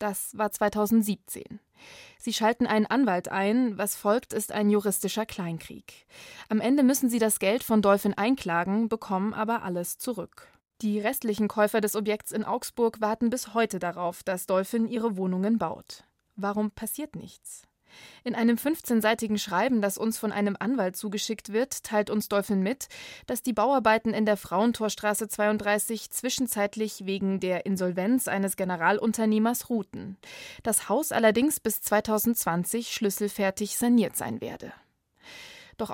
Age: 20-39